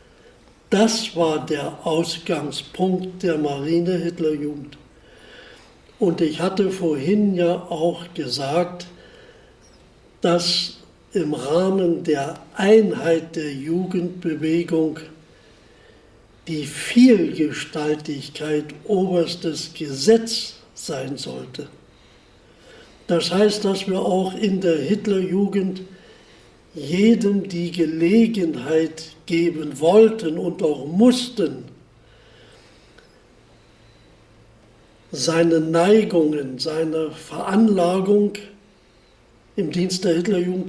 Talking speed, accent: 75 wpm, German